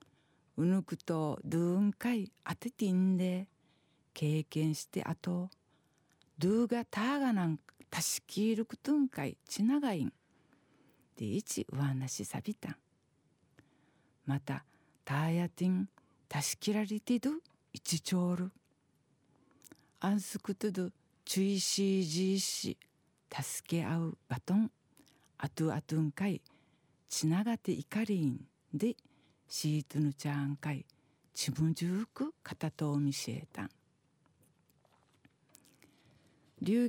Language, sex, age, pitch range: Japanese, female, 50-69, 150-210 Hz